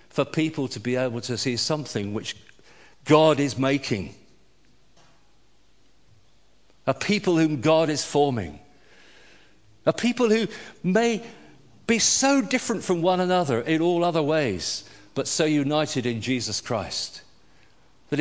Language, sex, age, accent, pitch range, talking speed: English, male, 50-69, British, 110-160 Hz, 130 wpm